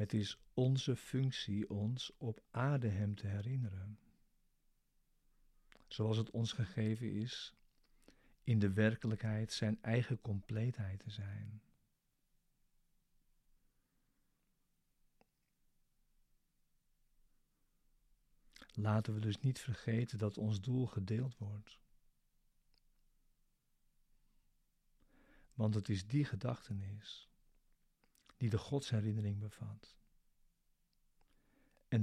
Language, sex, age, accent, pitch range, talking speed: Dutch, male, 50-69, Dutch, 105-125 Hz, 80 wpm